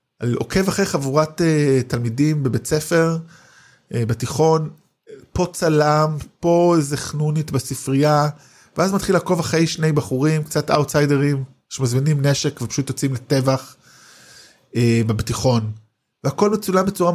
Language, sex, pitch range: Hebrew, male, 125-160 Hz